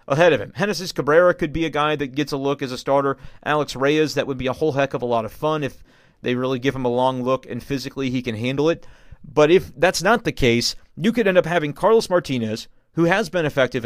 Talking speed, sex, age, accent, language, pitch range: 260 wpm, male, 30-49, American, English, 130-155 Hz